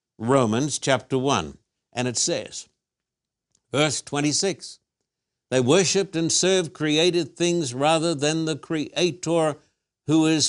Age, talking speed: 60-79, 115 wpm